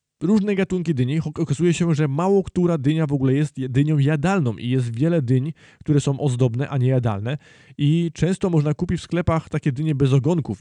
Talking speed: 190 wpm